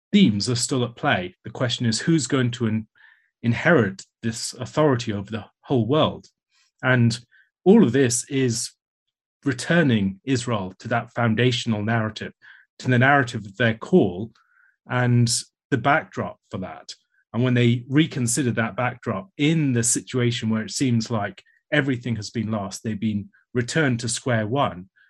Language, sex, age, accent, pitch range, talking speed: English, male, 30-49, British, 110-130 Hz, 150 wpm